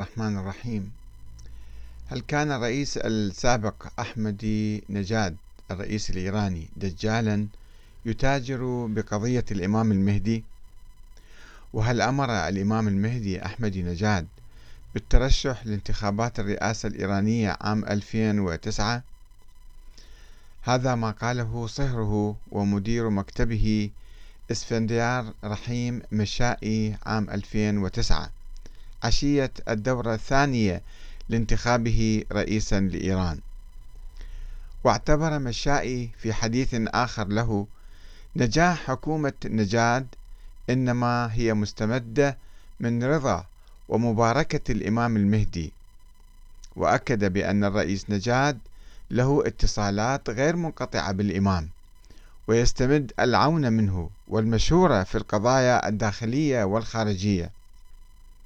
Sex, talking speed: male, 80 wpm